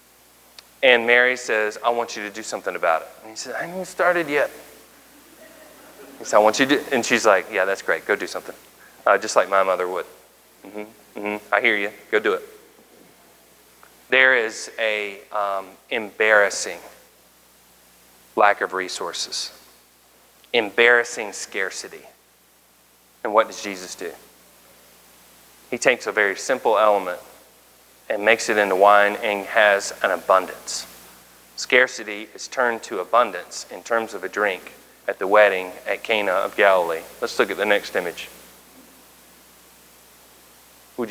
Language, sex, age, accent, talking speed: English, male, 30-49, American, 150 wpm